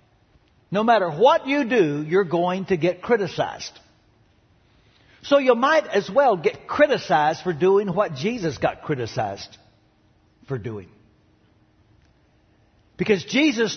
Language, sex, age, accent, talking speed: English, male, 60-79, American, 120 wpm